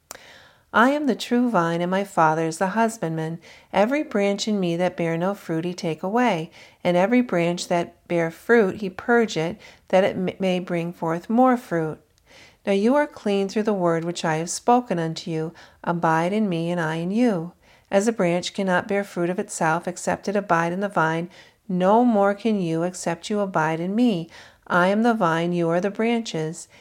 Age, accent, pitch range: 50-69, American, 170-210 Hz